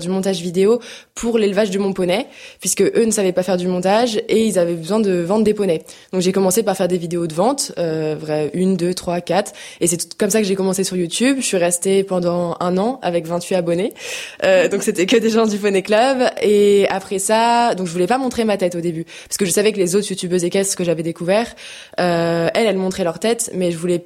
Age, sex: 20-39, female